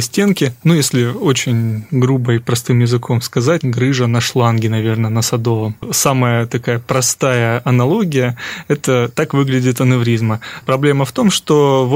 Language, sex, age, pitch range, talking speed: Russian, male, 20-39, 125-150 Hz, 140 wpm